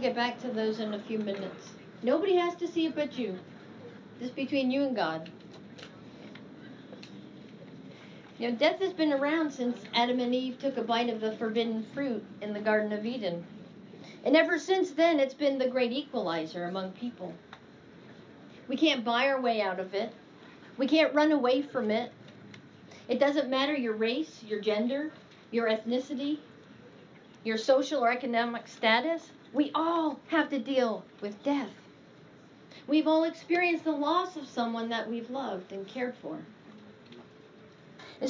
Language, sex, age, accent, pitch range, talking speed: English, female, 40-59, American, 225-310 Hz, 160 wpm